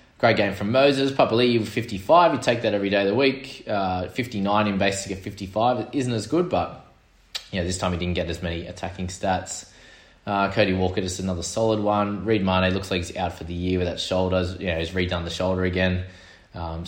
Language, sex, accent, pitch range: English, male, Australian, 90-110 Hz